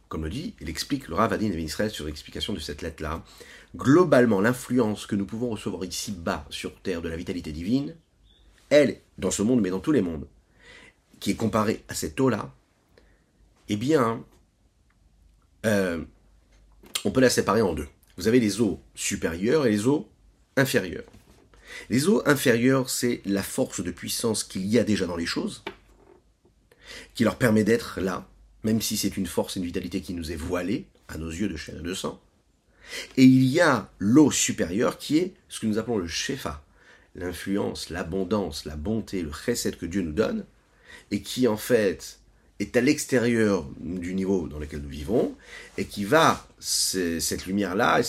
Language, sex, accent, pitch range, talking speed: French, male, French, 85-115 Hz, 180 wpm